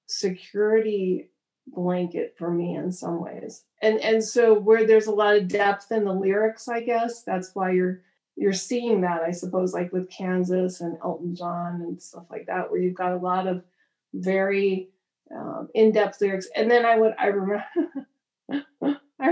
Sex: female